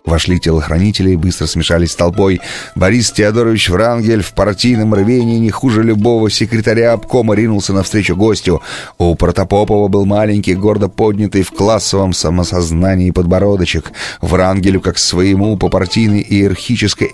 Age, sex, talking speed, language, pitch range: 30-49, male, 130 wpm, Russian, 85-115 Hz